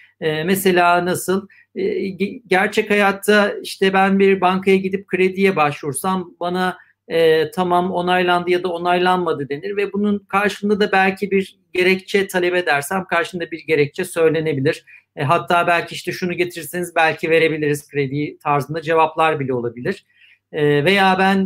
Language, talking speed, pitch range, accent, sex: Turkish, 140 wpm, 165-195 Hz, native, male